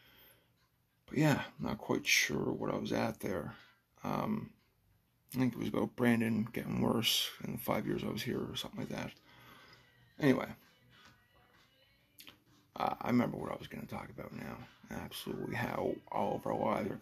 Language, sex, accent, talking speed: English, male, American, 175 wpm